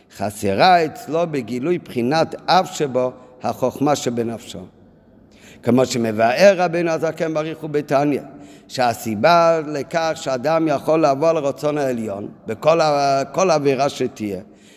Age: 50-69